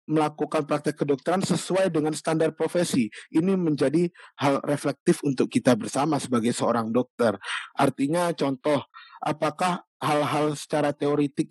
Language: Indonesian